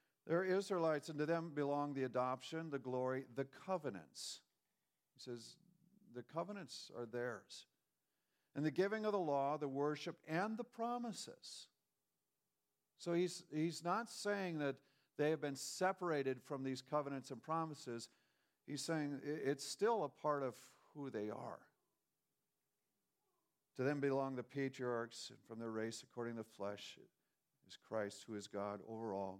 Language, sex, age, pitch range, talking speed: English, male, 50-69, 110-150 Hz, 150 wpm